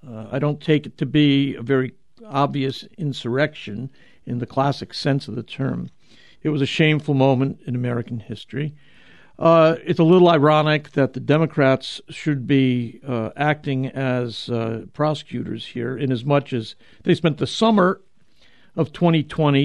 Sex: male